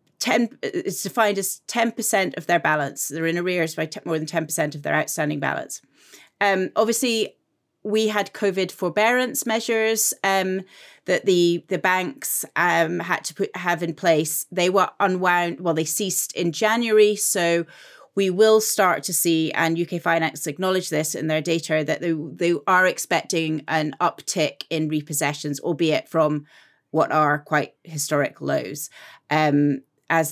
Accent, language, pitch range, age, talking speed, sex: British, English, 160-205 Hz, 30-49, 155 wpm, female